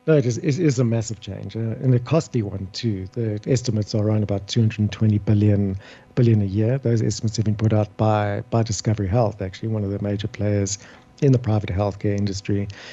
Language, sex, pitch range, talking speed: English, male, 105-125 Hz, 210 wpm